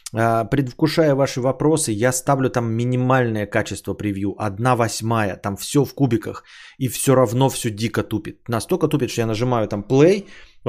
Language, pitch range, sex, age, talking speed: Bulgarian, 110-140 Hz, male, 20-39, 165 wpm